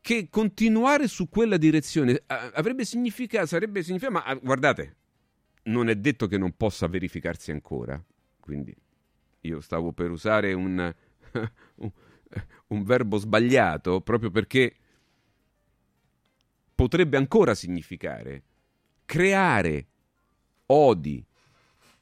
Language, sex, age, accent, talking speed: Italian, male, 40-59, native, 95 wpm